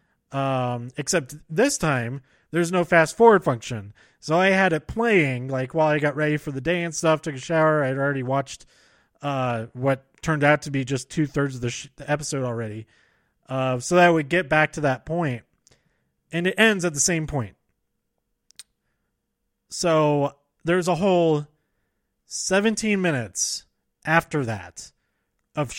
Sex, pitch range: male, 135-175 Hz